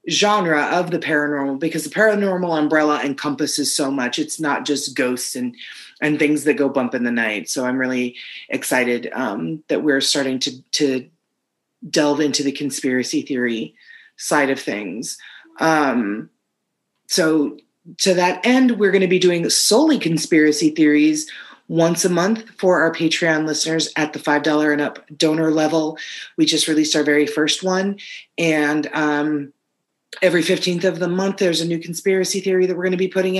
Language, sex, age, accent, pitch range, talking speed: English, female, 30-49, American, 150-200 Hz, 170 wpm